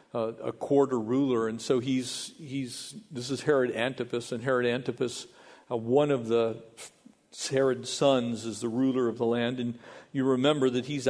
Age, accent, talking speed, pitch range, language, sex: 50-69, American, 175 wpm, 125-200 Hz, English, male